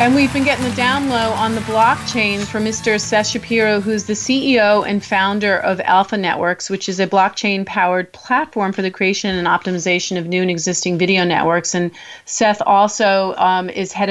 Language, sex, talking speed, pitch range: English, female, 185 wpm, 180-215 Hz